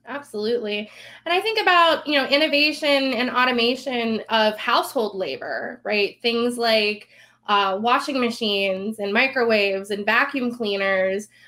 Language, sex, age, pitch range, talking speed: English, female, 20-39, 210-260 Hz, 125 wpm